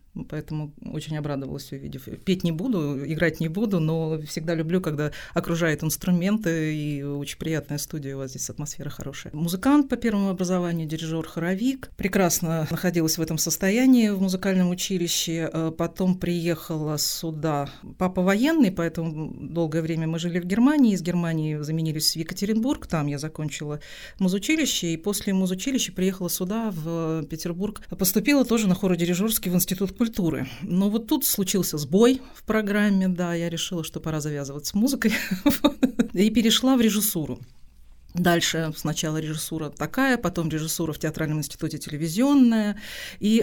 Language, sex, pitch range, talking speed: Russian, female, 155-205 Hz, 145 wpm